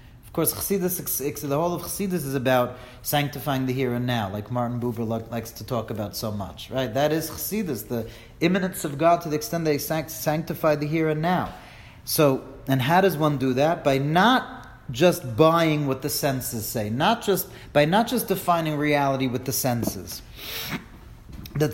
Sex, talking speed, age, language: male, 190 wpm, 40-59, English